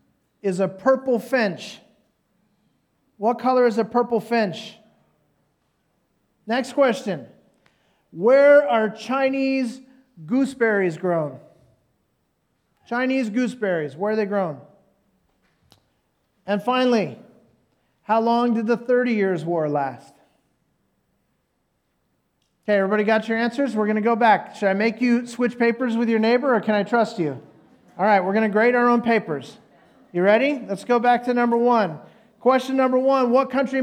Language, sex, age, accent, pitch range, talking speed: English, male, 40-59, American, 205-250 Hz, 140 wpm